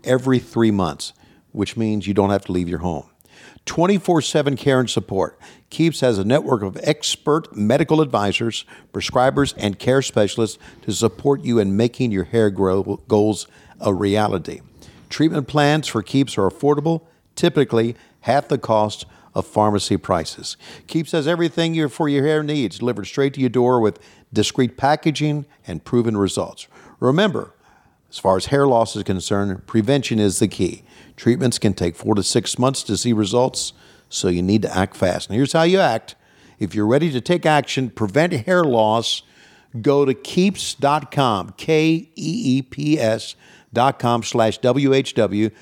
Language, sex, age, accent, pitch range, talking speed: English, male, 50-69, American, 105-145 Hz, 155 wpm